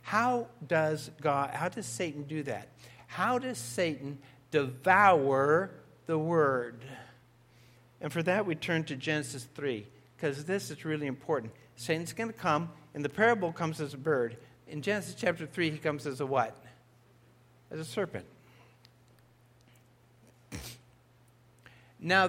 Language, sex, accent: English, male, American